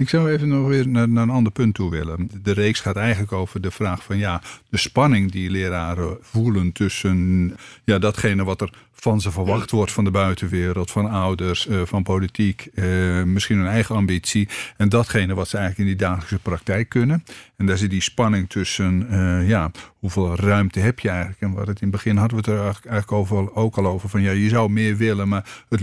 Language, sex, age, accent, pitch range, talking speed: Dutch, male, 50-69, Dutch, 100-130 Hz, 205 wpm